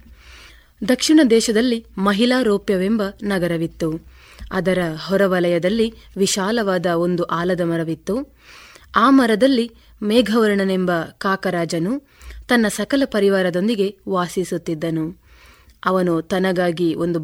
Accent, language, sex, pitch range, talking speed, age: native, Kannada, female, 175-215 Hz, 75 wpm, 20-39